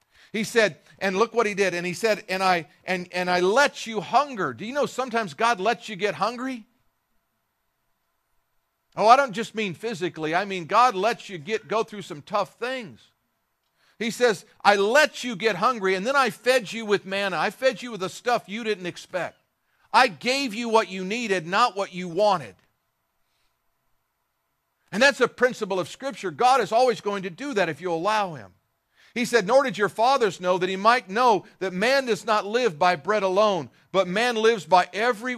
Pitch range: 150-220 Hz